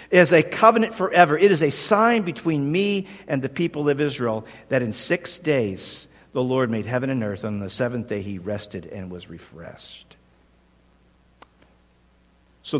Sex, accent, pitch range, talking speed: male, American, 135-215 Hz, 170 wpm